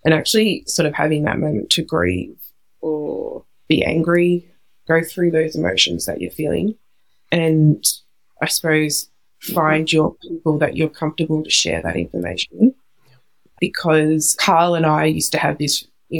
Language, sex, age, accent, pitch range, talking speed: English, female, 20-39, Australian, 155-170 Hz, 150 wpm